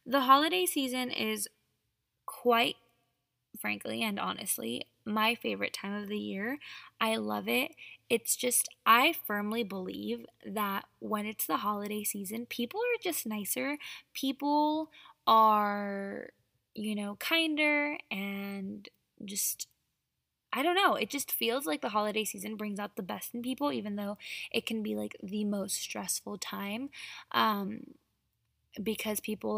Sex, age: female, 10-29